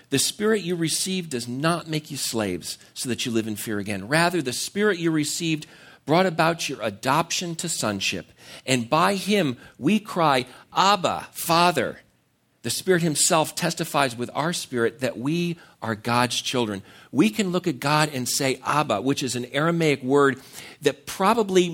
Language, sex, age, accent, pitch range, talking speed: English, male, 50-69, American, 130-170 Hz, 170 wpm